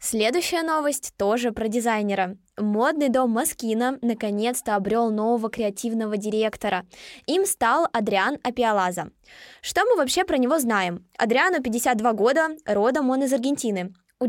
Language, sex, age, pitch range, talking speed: Russian, female, 20-39, 215-265 Hz, 130 wpm